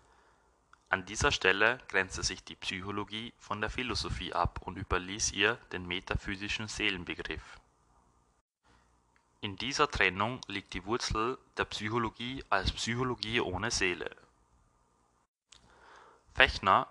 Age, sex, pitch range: 30-49, male, 85-105 Hz